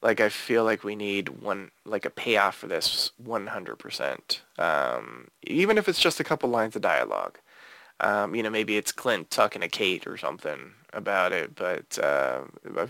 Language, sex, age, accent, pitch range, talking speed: English, male, 20-39, American, 115-160 Hz, 175 wpm